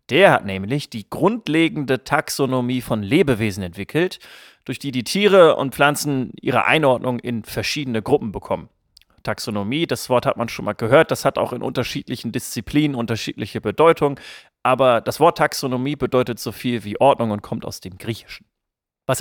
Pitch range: 110-140 Hz